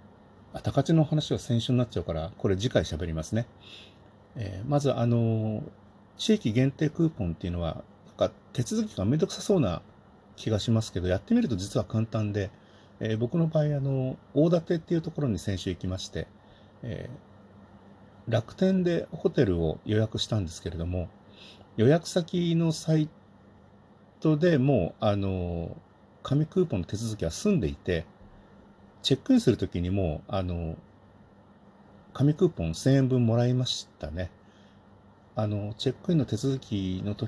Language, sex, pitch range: Japanese, male, 95-140 Hz